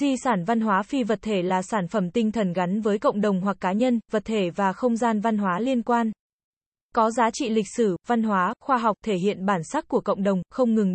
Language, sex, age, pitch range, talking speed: Vietnamese, female, 20-39, 200-245 Hz, 250 wpm